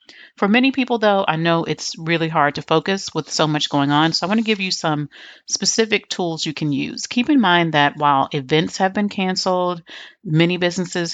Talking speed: 210 wpm